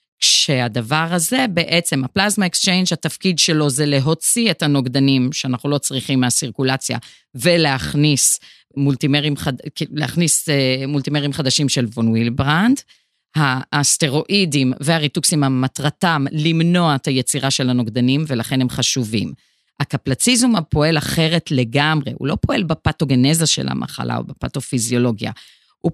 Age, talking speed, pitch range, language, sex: 40-59, 110 wpm, 135-175 Hz, Hebrew, female